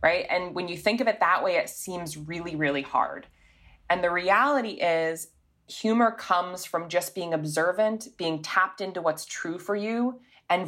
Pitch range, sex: 160-195 Hz, female